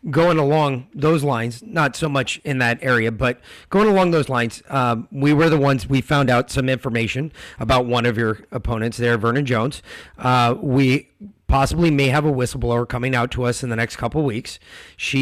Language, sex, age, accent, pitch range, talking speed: English, male, 30-49, American, 120-145 Hz, 195 wpm